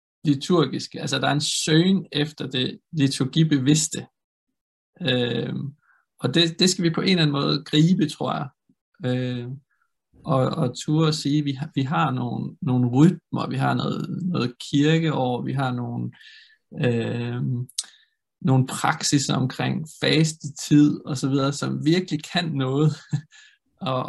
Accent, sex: native, male